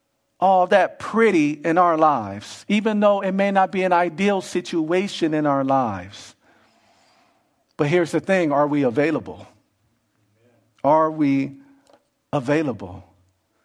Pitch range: 125-180 Hz